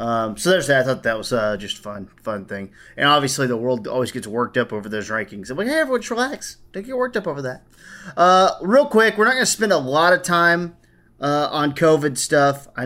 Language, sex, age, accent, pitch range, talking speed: English, male, 30-49, American, 125-155 Hz, 245 wpm